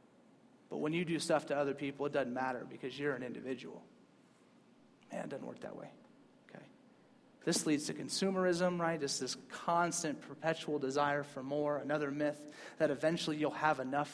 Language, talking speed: English, 175 wpm